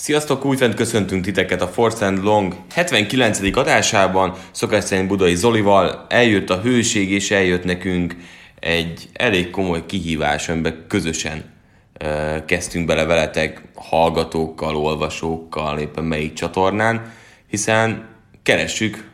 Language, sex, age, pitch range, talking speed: Hungarian, male, 10-29, 85-105 Hz, 115 wpm